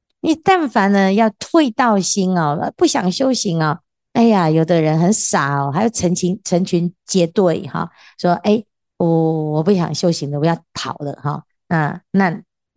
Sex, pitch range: female, 165-225 Hz